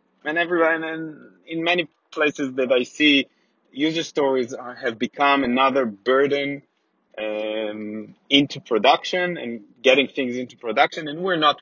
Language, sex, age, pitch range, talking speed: English, male, 30-49, 125-160 Hz, 140 wpm